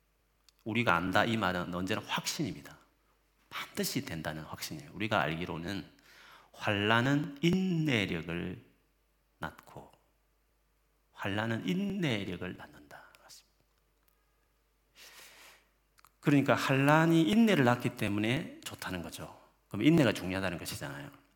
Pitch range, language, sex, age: 90-140 Hz, Korean, male, 40-59